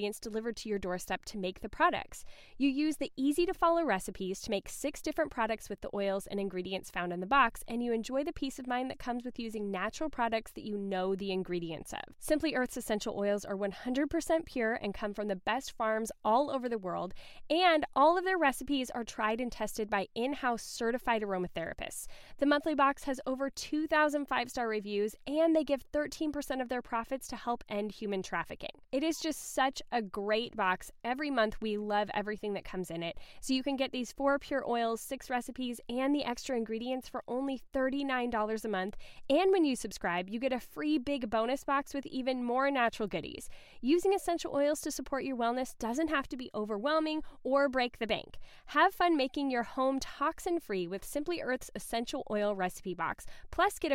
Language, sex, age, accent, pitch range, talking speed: English, female, 10-29, American, 215-285 Hz, 200 wpm